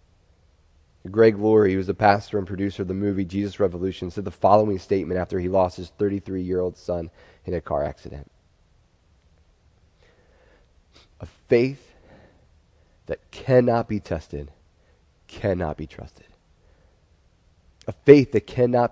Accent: American